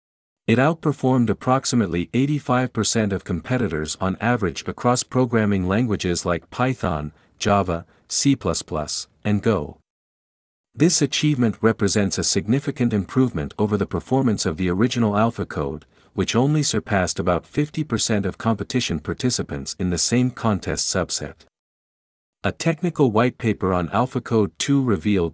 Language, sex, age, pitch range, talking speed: Vietnamese, male, 50-69, 90-125 Hz, 125 wpm